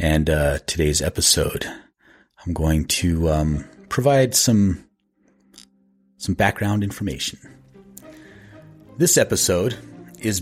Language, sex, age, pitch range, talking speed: English, male, 30-49, 85-120 Hz, 90 wpm